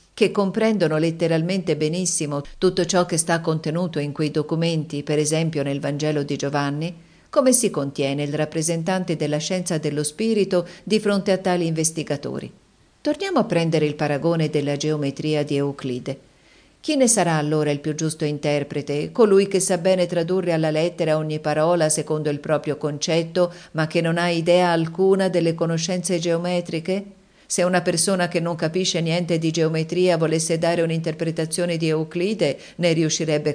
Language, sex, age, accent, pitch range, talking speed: Italian, female, 50-69, native, 150-175 Hz, 155 wpm